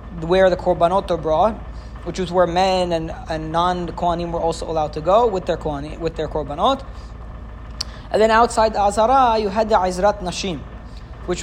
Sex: male